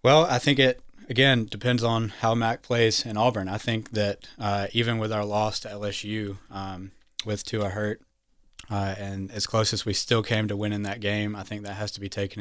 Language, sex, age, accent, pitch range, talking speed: English, male, 20-39, American, 100-110 Hz, 220 wpm